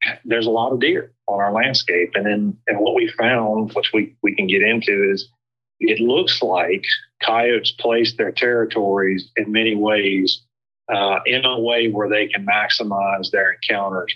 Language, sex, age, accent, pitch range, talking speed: English, male, 40-59, American, 105-120 Hz, 175 wpm